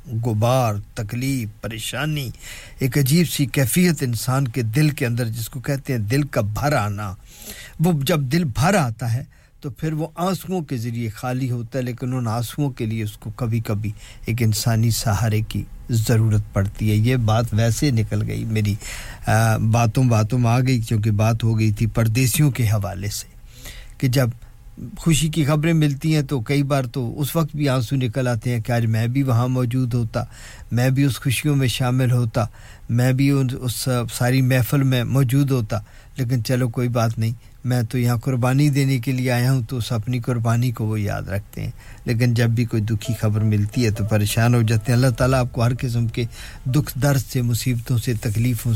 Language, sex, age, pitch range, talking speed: English, male, 50-69, 115-130 Hz, 190 wpm